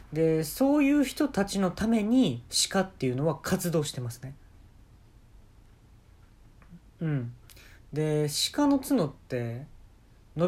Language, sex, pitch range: Japanese, male, 105-160 Hz